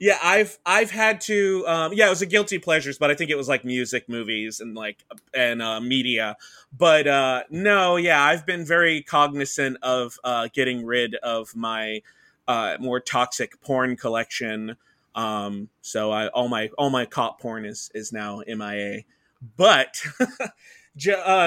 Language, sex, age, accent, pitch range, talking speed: English, male, 30-49, American, 125-165 Hz, 165 wpm